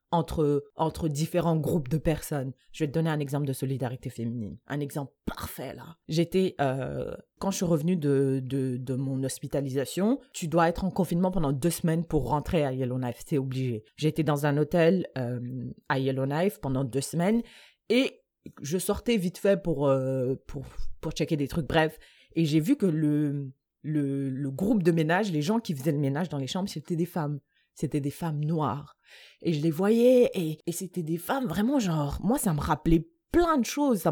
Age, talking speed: 30-49, 195 wpm